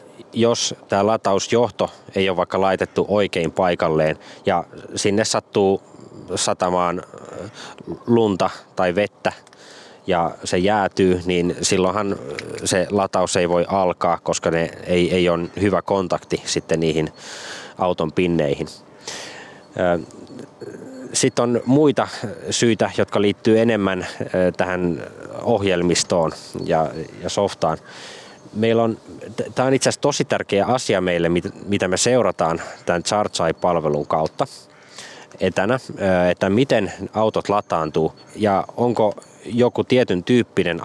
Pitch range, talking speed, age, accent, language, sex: 90-110 Hz, 105 wpm, 20-39, native, Finnish, male